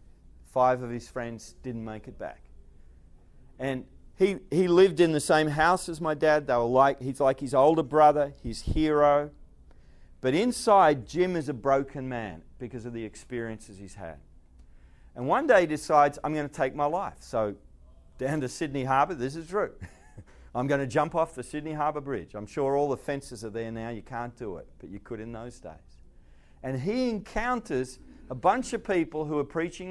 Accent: Australian